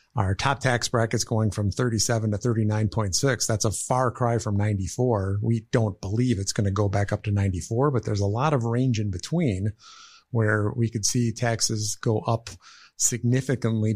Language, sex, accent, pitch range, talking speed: English, male, American, 105-120 Hz, 175 wpm